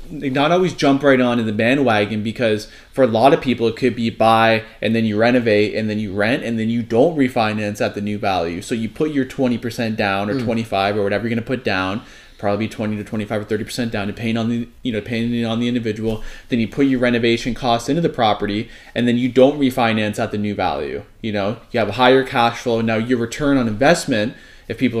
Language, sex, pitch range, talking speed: English, male, 110-130 Hz, 240 wpm